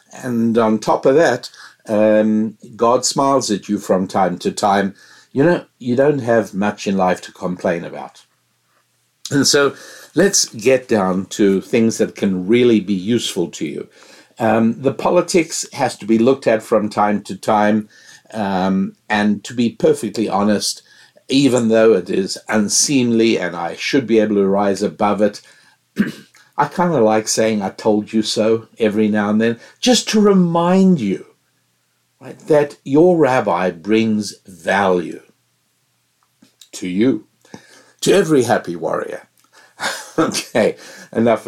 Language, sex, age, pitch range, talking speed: English, male, 60-79, 105-130 Hz, 150 wpm